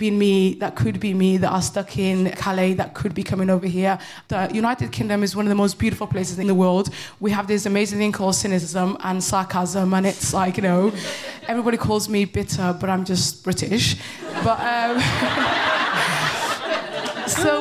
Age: 20-39